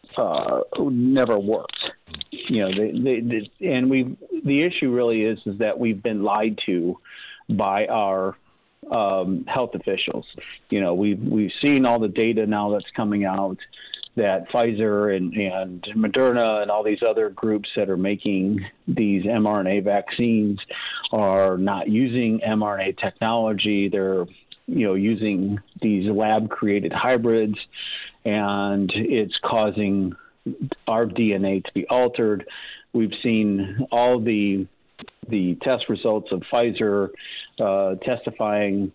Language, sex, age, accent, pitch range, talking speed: English, male, 40-59, American, 100-115 Hz, 135 wpm